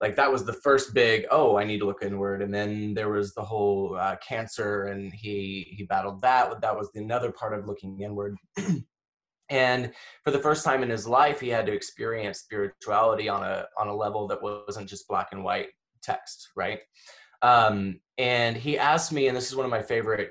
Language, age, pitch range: English, 20-39, 105-140 Hz